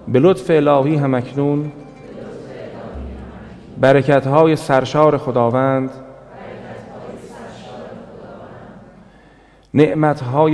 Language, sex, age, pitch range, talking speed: Persian, male, 40-59, 120-150 Hz, 55 wpm